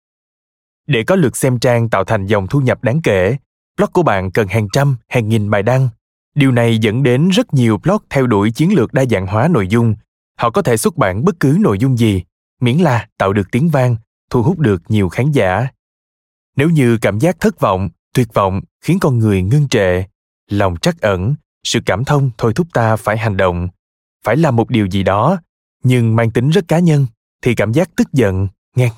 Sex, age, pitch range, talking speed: male, 20-39, 105-145 Hz, 215 wpm